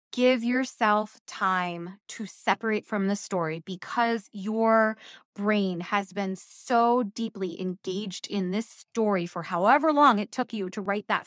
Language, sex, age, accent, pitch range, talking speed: English, female, 20-39, American, 195-240 Hz, 150 wpm